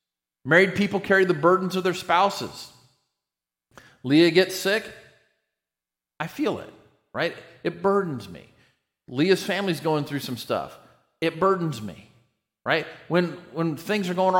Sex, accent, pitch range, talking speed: male, American, 135-185 Hz, 140 wpm